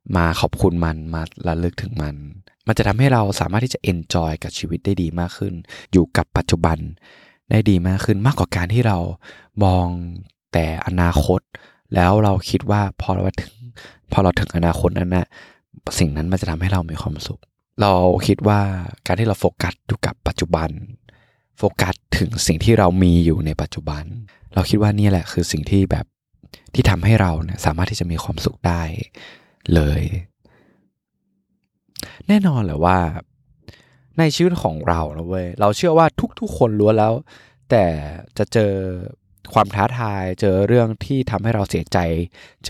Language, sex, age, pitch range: Thai, male, 20-39, 85-110 Hz